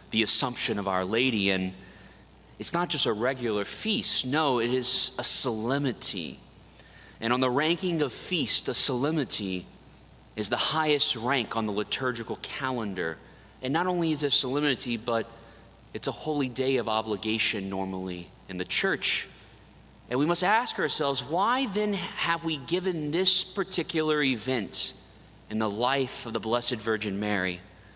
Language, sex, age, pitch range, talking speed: English, male, 30-49, 105-140 Hz, 150 wpm